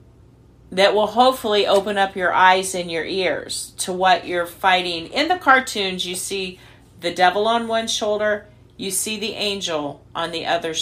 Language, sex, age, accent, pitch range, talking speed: English, female, 40-59, American, 165-220 Hz, 170 wpm